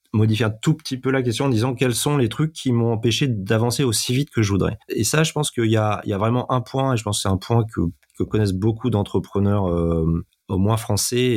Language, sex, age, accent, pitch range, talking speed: French, male, 30-49, French, 95-115 Hz, 270 wpm